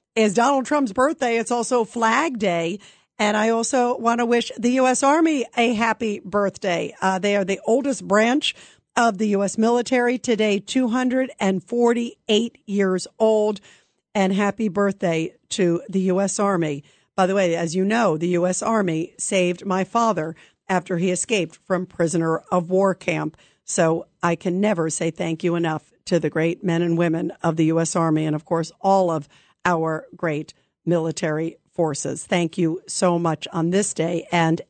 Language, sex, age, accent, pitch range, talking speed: English, female, 50-69, American, 180-235 Hz, 165 wpm